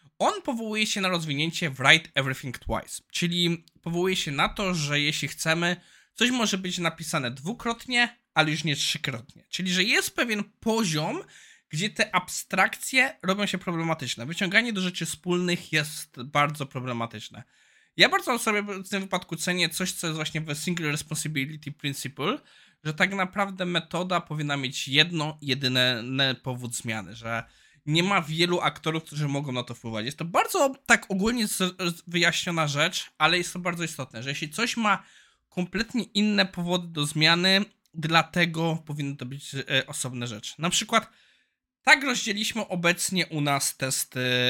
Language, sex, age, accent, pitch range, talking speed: Polish, male, 20-39, native, 145-190 Hz, 155 wpm